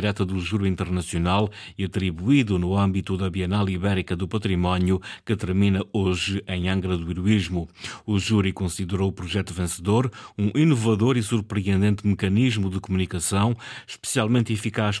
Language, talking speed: Portuguese, 140 wpm